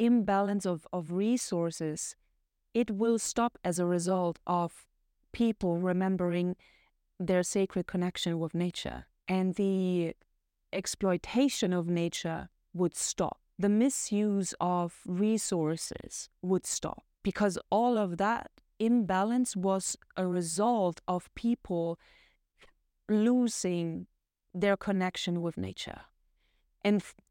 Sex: female